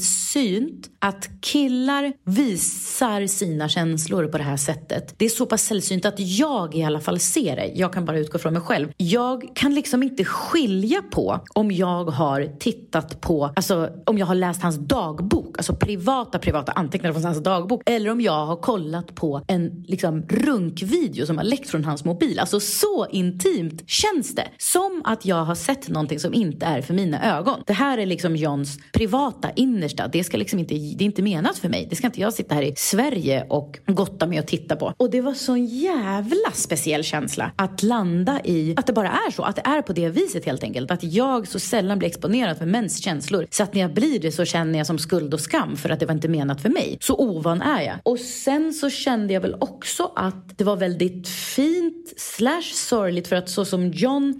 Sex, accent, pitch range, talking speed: female, Swedish, 165-235 Hz, 210 wpm